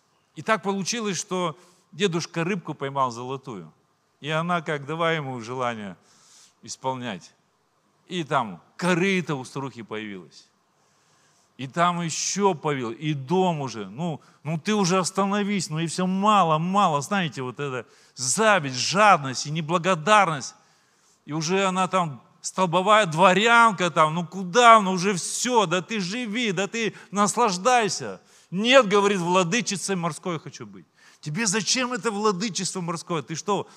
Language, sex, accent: Russian, male, native